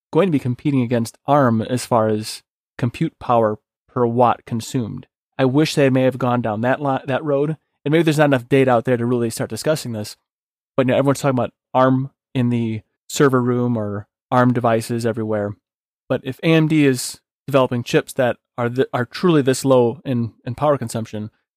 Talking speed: 195 wpm